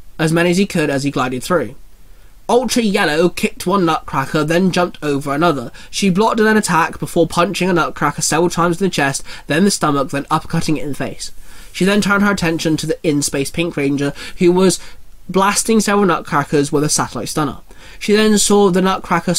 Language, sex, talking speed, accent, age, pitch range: English, male, 200 wpm, British, 20-39, 150-185 Hz